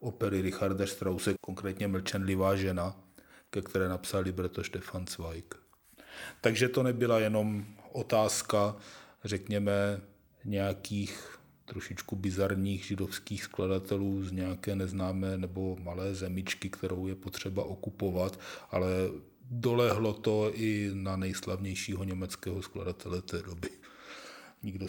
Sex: male